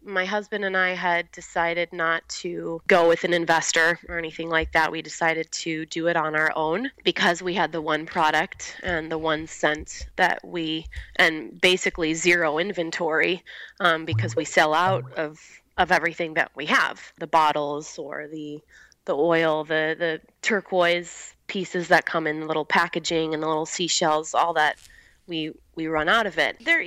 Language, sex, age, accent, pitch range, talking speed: English, female, 20-39, American, 155-175 Hz, 175 wpm